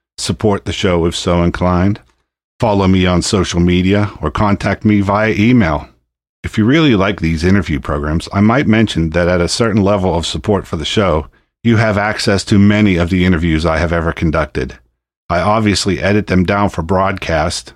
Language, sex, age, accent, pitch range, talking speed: English, male, 50-69, American, 80-100 Hz, 185 wpm